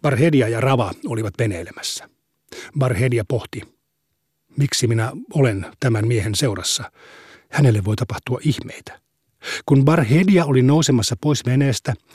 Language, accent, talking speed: Finnish, native, 115 wpm